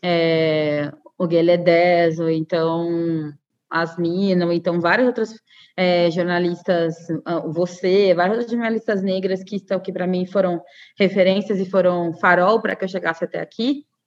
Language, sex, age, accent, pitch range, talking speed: Portuguese, female, 20-39, Brazilian, 170-205 Hz, 140 wpm